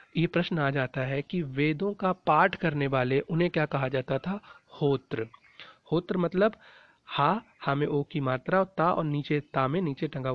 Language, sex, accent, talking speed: Hindi, male, native, 185 wpm